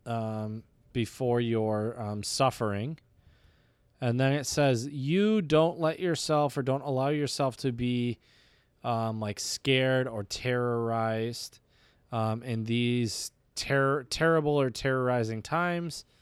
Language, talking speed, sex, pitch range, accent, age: English, 120 wpm, male, 115-140 Hz, American, 20-39